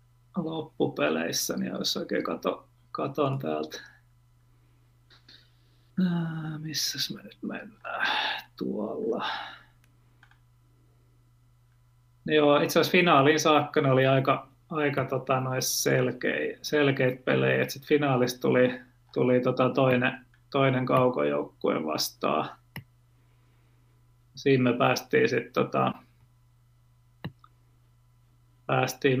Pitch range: 120-145 Hz